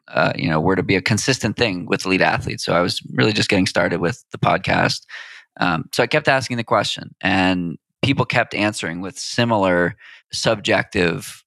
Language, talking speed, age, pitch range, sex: English, 190 wpm, 20-39, 95-130 Hz, male